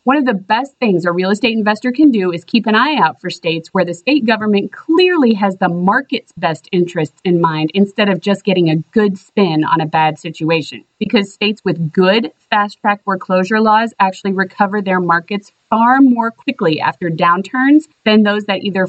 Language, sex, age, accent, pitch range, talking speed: English, female, 30-49, American, 180-240 Hz, 195 wpm